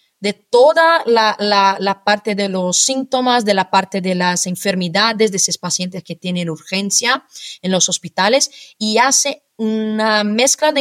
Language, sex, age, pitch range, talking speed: Spanish, female, 30-49, 190-240 Hz, 160 wpm